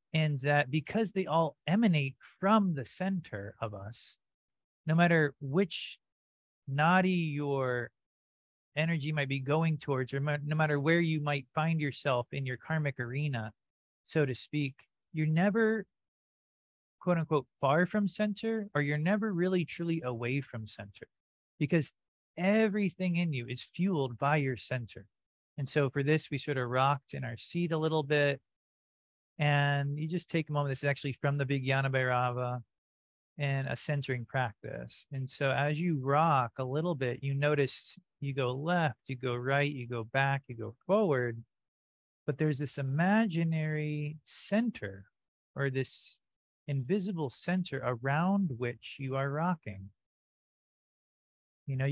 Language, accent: English, American